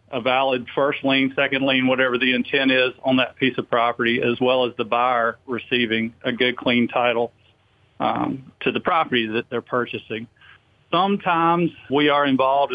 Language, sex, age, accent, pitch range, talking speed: English, male, 50-69, American, 120-140 Hz, 170 wpm